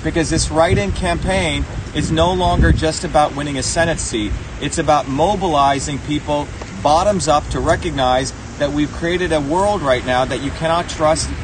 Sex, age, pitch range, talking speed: male, 40-59, 130-165 Hz, 170 wpm